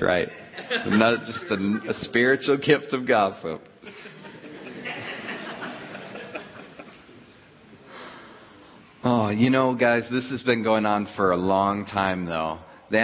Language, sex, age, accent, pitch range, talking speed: English, male, 40-59, American, 100-120 Hz, 115 wpm